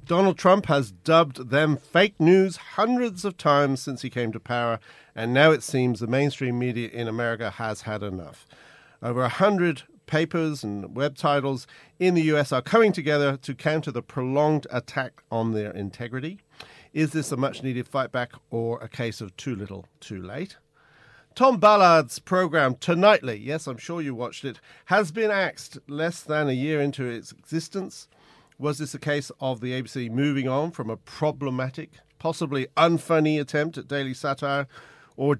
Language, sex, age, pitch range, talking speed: English, male, 50-69, 120-160 Hz, 170 wpm